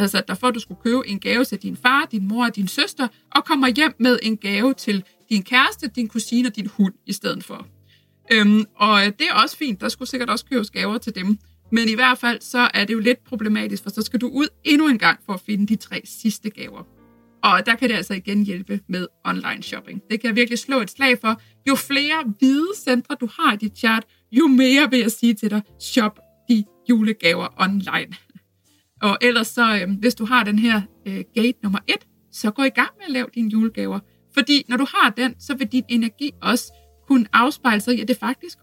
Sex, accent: female, native